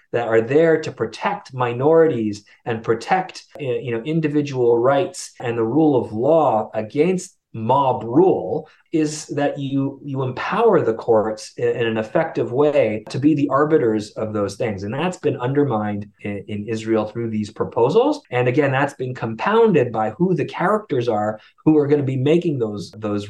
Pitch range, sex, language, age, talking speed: 110-150 Hz, male, English, 30-49, 170 wpm